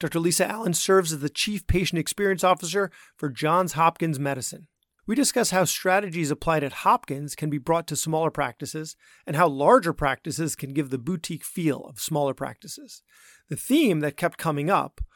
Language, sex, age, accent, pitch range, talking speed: English, male, 30-49, American, 140-175 Hz, 180 wpm